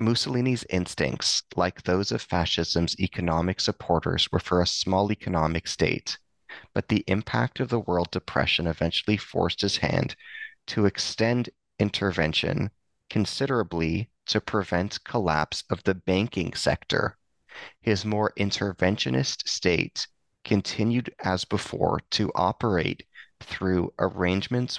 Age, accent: 30-49, American